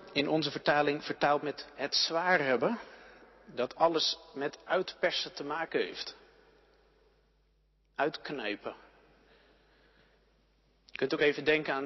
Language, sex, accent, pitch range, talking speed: Dutch, male, Dutch, 150-215 Hz, 110 wpm